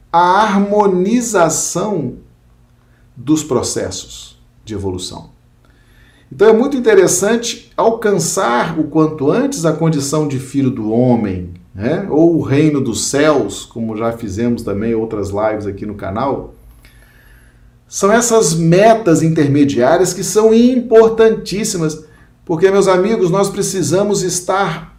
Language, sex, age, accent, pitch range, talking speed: Portuguese, male, 40-59, Brazilian, 115-190 Hz, 115 wpm